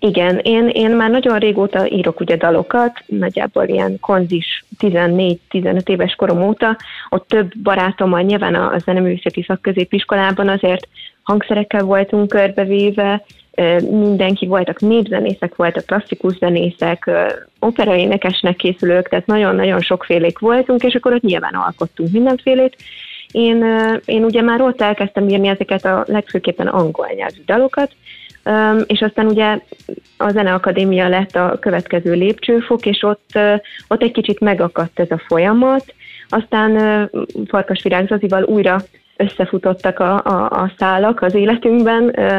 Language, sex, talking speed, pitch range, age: Hungarian, female, 130 wpm, 185-215 Hz, 20-39